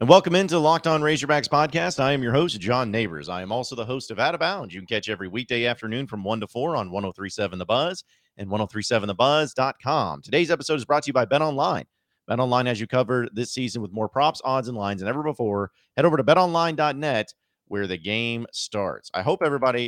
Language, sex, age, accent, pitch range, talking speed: English, male, 30-49, American, 95-125 Hz, 225 wpm